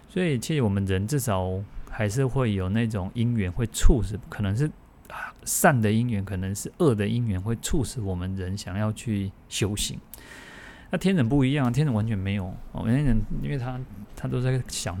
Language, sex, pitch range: Chinese, male, 100-120 Hz